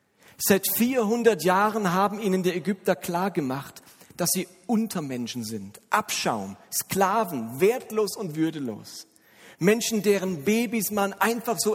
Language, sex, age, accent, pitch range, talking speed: German, male, 40-59, German, 150-205 Hz, 125 wpm